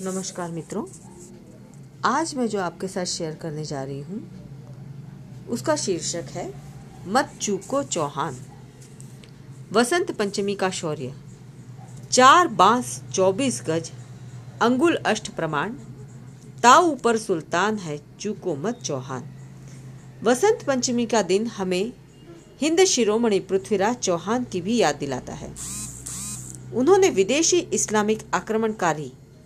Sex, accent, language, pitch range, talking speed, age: female, native, Hindi, 145-230 Hz, 110 wpm, 40-59